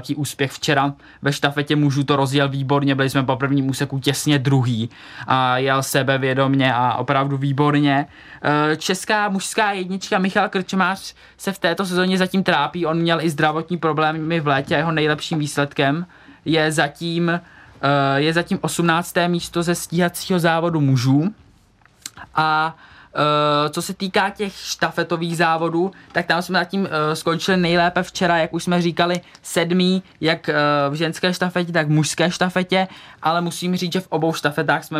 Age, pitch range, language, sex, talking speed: 20-39, 140-170 Hz, Czech, male, 155 wpm